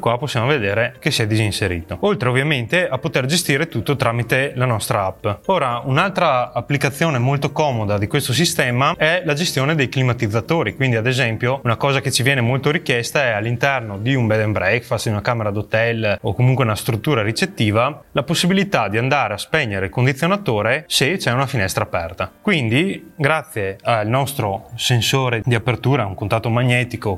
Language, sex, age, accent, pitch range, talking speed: Italian, male, 20-39, native, 115-155 Hz, 175 wpm